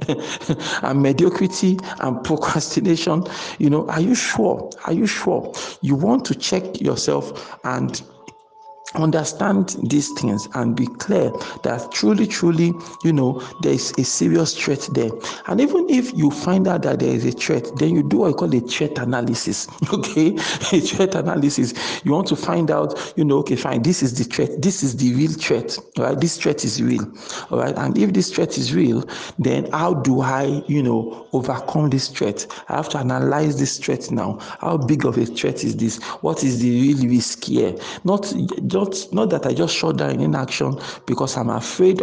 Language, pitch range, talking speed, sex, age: English, 125-175 Hz, 190 wpm, male, 50-69